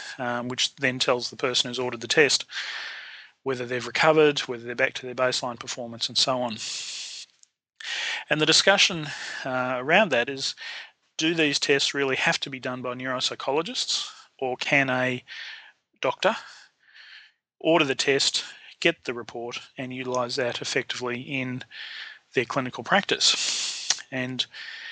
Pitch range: 125-150 Hz